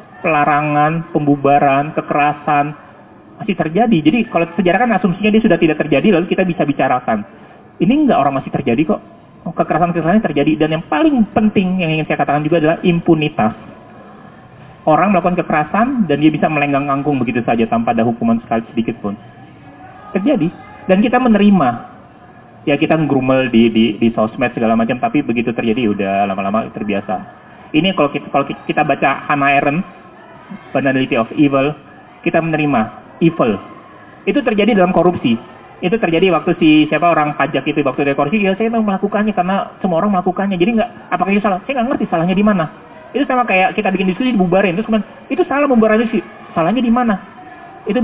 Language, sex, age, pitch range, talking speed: Indonesian, male, 30-49, 145-205 Hz, 170 wpm